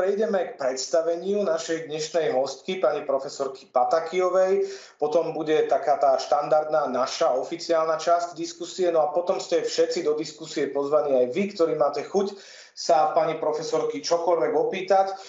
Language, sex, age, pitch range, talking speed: Slovak, male, 40-59, 135-175 Hz, 140 wpm